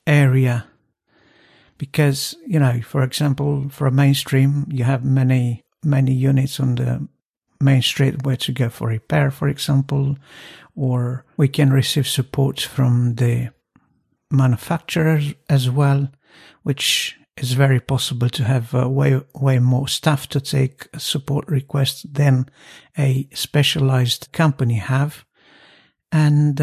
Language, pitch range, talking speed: English, 130-145 Hz, 125 wpm